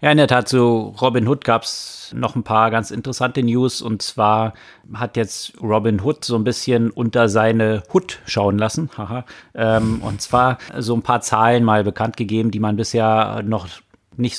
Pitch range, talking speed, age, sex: 110-125 Hz, 185 wpm, 30-49, male